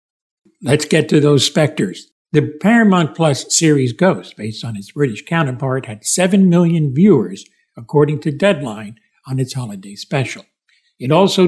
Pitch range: 140-190 Hz